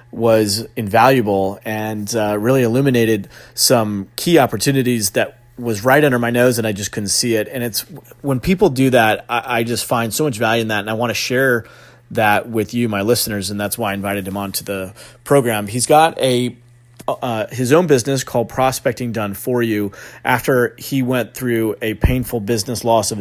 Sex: male